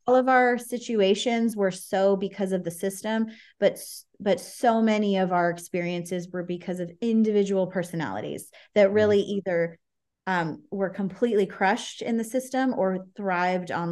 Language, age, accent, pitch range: English, 20-39, American, 175-200 Hz